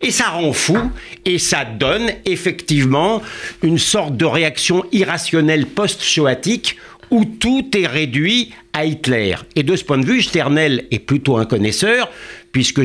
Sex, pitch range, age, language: male, 125-190 Hz, 60-79, French